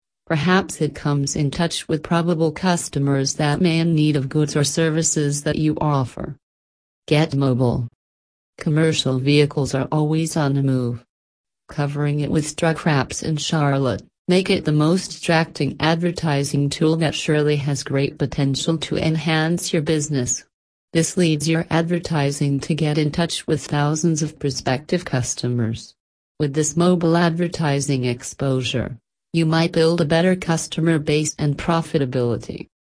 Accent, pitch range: American, 140-165 Hz